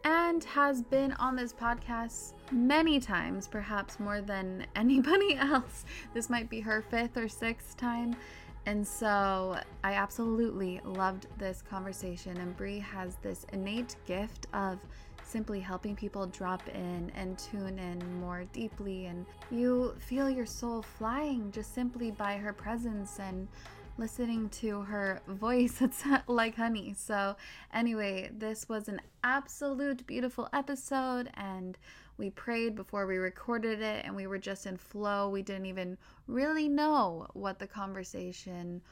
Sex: female